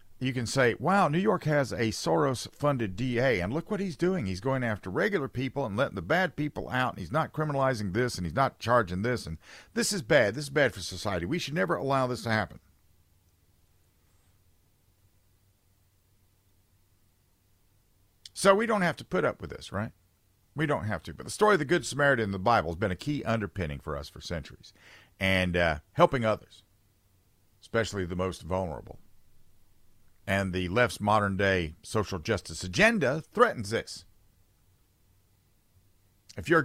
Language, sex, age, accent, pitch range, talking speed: English, male, 50-69, American, 95-125 Hz, 170 wpm